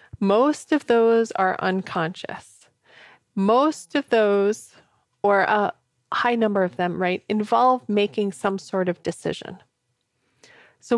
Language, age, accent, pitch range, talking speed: English, 30-49, American, 170-215 Hz, 120 wpm